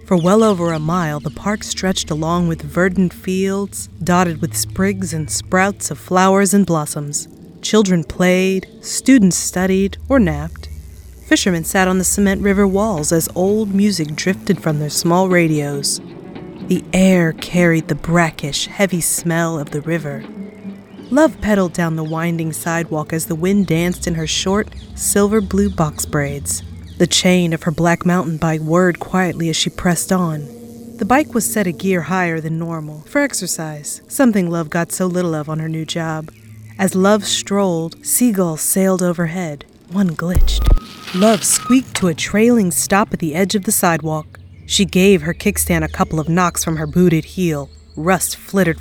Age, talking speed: 30-49, 165 wpm